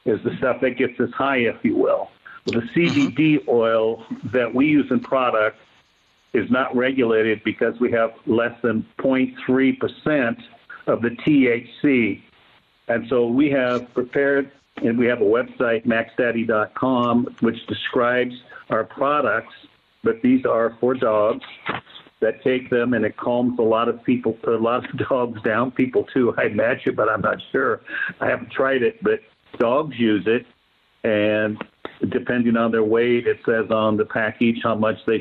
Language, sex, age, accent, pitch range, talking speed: English, male, 60-79, American, 115-130 Hz, 160 wpm